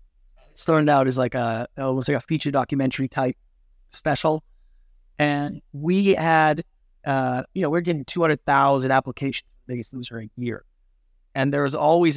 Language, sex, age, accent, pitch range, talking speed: English, male, 30-49, American, 125-150 Hz, 170 wpm